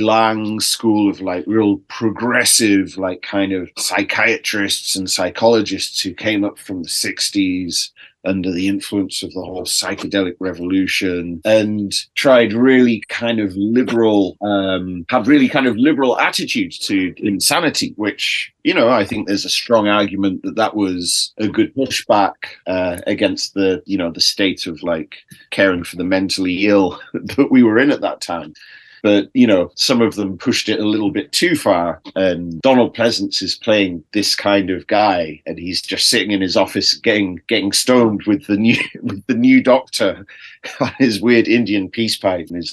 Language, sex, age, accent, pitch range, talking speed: English, male, 30-49, British, 95-115 Hz, 175 wpm